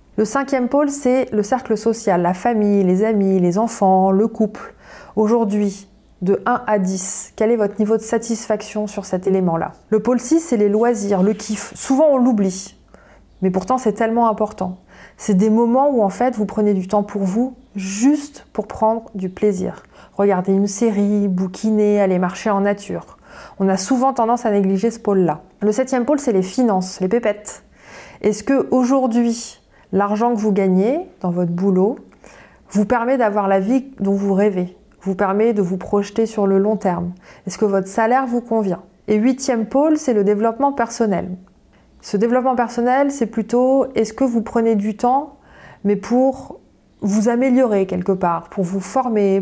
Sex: female